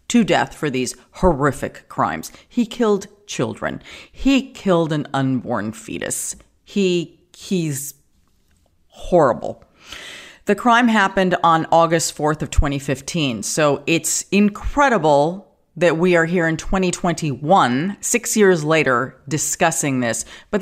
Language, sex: English, female